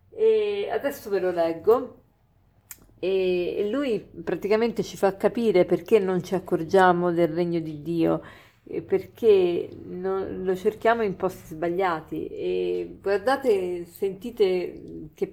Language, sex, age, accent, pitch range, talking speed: Italian, female, 40-59, native, 170-220 Hz, 115 wpm